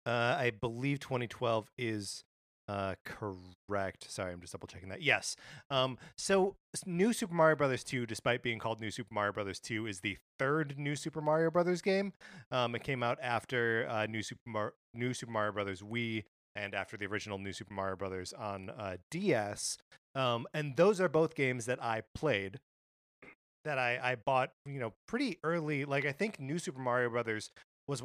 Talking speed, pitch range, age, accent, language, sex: 190 wpm, 105-135 Hz, 30-49, American, English, male